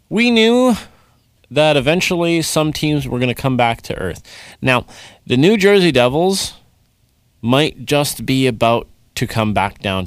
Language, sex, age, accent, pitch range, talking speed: English, male, 30-49, American, 105-145 Hz, 155 wpm